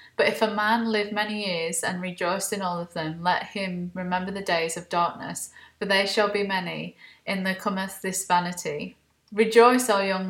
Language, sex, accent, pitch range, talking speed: English, female, British, 180-225 Hz, 200 wpm